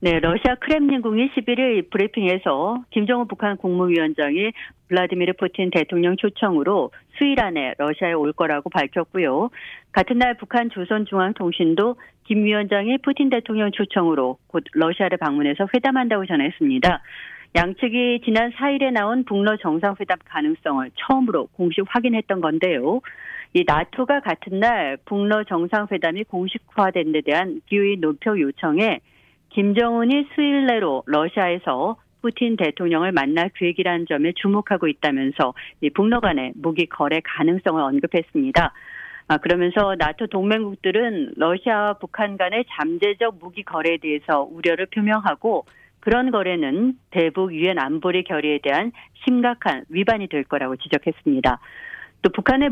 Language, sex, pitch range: Korean, female, 170-240 Hz